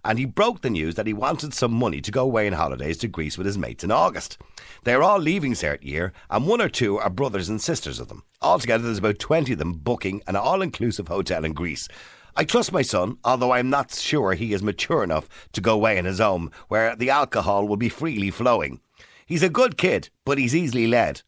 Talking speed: 230 wpm